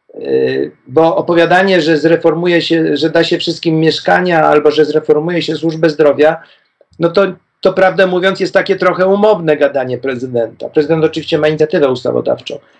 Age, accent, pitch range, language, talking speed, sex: 40-59, native, 150-180 Hz, Polish, 150 wpm, male